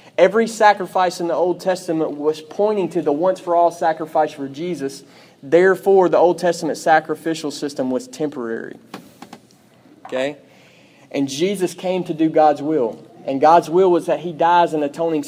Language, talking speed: English, 160 wpm